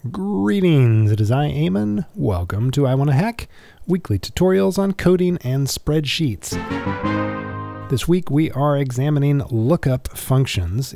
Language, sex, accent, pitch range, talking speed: English, male, American, 110-155 Hz, 130 wpm